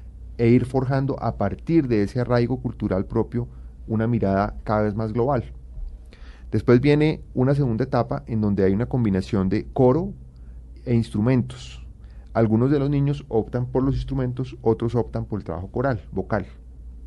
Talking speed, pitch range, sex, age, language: 160 wpm, 80-120 Hz, male, 30-49, Spanish